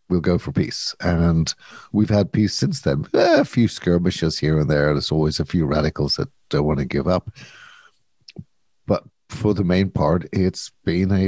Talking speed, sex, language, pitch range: 185 wpm, male, English, 85-110 Hz